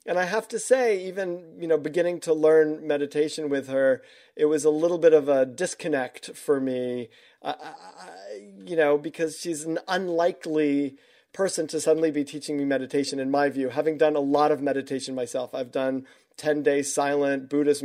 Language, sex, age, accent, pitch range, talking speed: English, male, 40-59, American, 140-180 Hz, 185 wpm